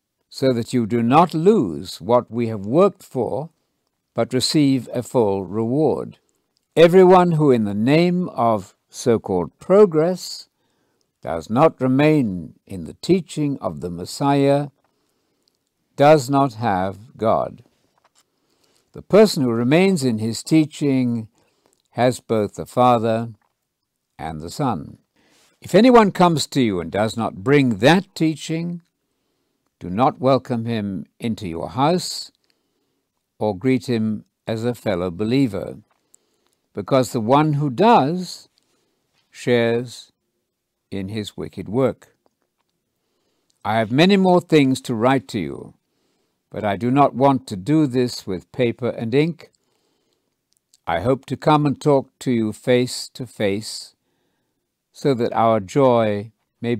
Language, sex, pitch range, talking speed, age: English, male, 110-150 Hz, 130 wpm, 60-79